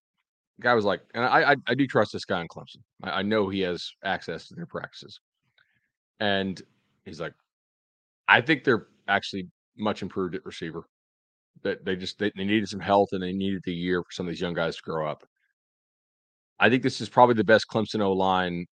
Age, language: 30-49, English